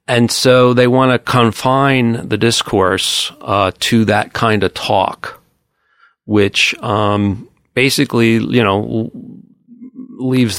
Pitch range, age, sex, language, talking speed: 95-120 Hz, 40-59, male, English, 115 wpm